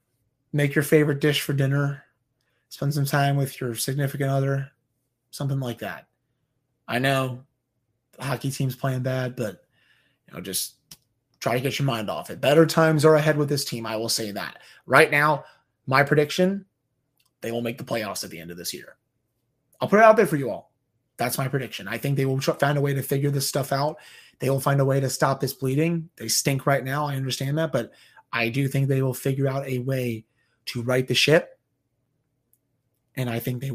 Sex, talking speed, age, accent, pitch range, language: male, 210 wpm, 30-49, American, 125-150 Hz, English